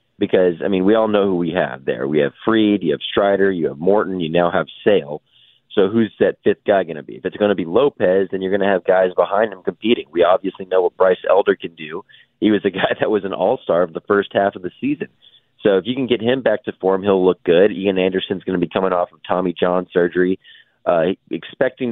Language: English